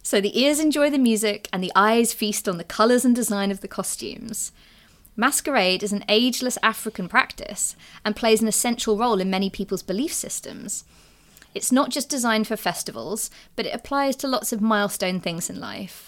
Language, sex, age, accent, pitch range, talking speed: English, female, 20-39, British, 190-235 Hz, 185 wpm